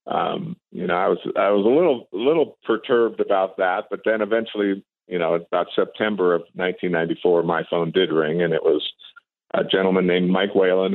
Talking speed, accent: 190 wpm, American